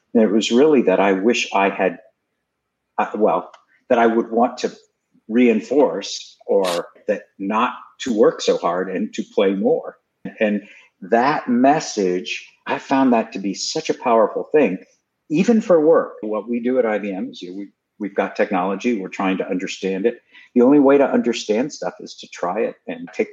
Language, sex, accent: English, male, American